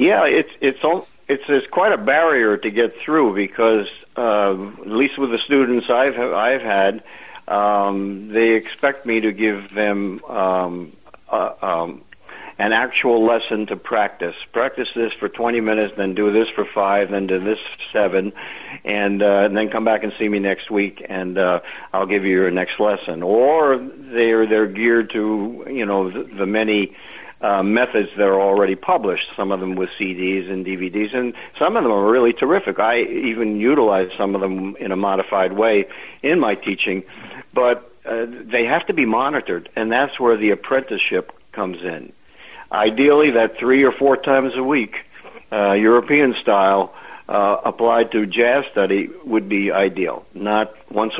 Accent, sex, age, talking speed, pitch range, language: American, male, 60-79, 170 wpm, 95-115 Hz, English